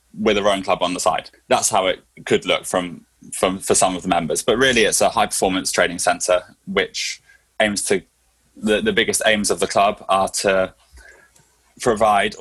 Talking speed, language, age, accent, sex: 195 wpm, English, 10-29, British, male